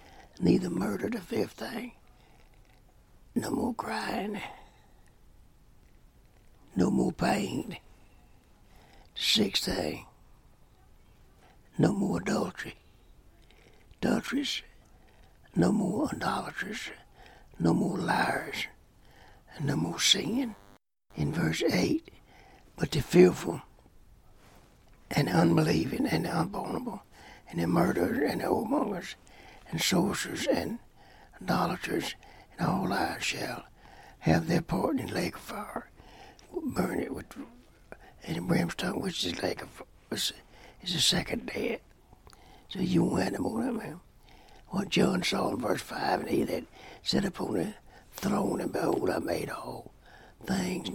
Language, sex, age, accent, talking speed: English, male, 60-79, American, 120 wpm